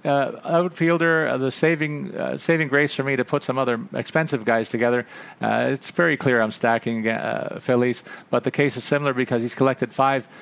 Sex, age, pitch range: male, 50-69, 115-140 Hz